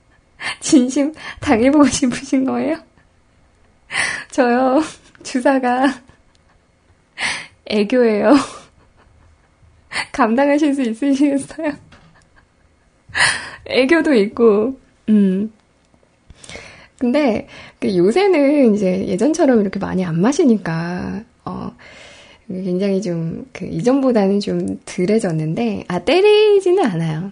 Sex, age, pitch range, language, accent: female, 20-39, 195-275 Hz, Korean, native